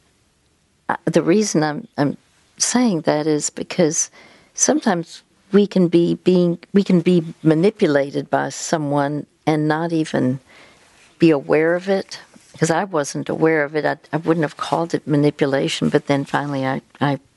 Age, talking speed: 60-79, 155 wpm